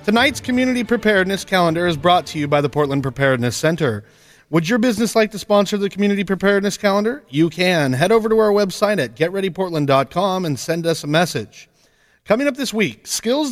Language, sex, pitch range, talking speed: English, male, 145-200 Hz, 185 wpm